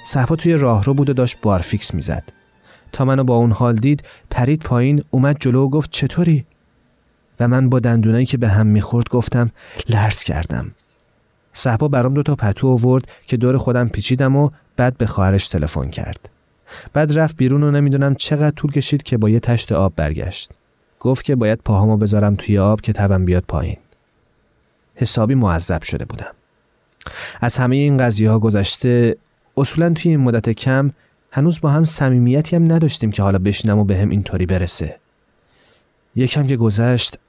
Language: Persian